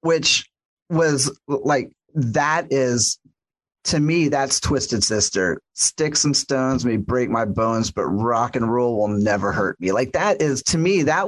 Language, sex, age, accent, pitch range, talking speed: English, male, 40-59, American, 115-155 Hz, 165 wpm